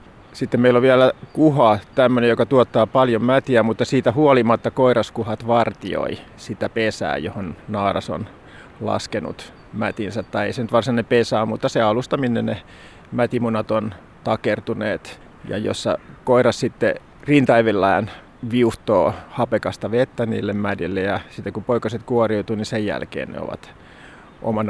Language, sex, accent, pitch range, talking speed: Finnish, male, native, 110-125 Hz, 135 wpm